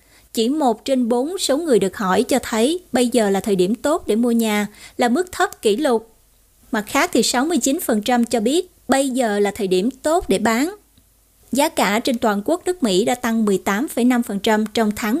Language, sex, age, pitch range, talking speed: Vietnamese, female, 20-39, 220-270 Hz, 195 wpm